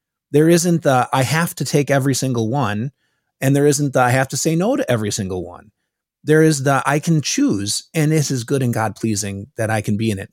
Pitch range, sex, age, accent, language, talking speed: 115-155 Hz, male, 30-49, American, English, 245 wpm